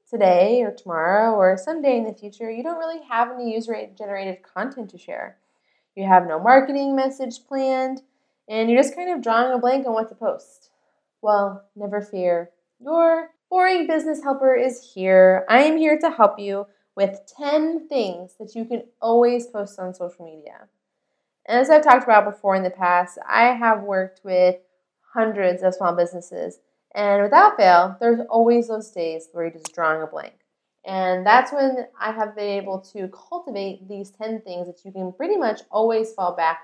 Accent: American